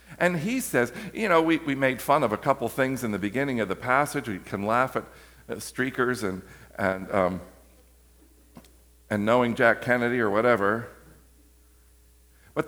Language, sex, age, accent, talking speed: English, male, 50-69, American, 165 wpm